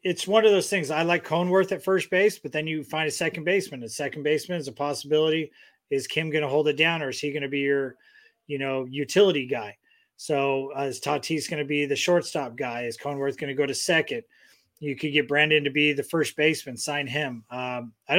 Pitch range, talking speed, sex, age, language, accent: 140-175 Hz, 240 wpm, male, 30-49, English, American